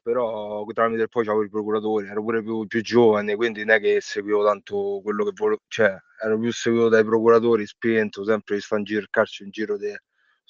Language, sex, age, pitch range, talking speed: Italian, male, 20-39, 105-135 Hz, 225 wpm